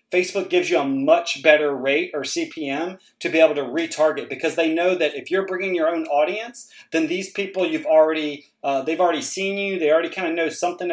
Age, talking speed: 30-49, 220 wpm